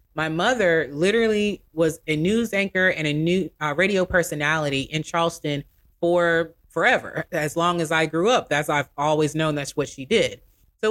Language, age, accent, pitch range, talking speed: English, 30-49, American, 155-210 Hz, 175 wpm